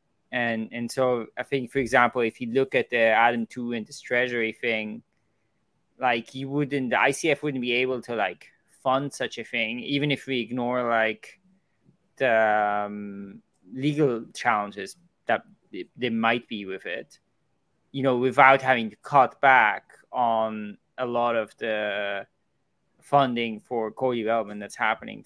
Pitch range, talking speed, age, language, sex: 110-130 Hz, 150 wpm, 20-39, English, male